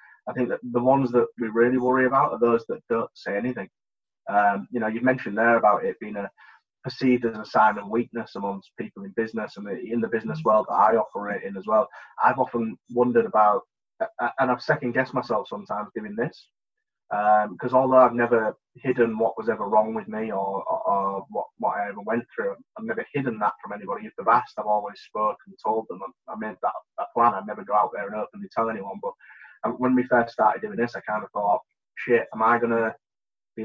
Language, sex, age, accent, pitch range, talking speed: English, male, 20-39, British, 110-125 Hz, 225 wpm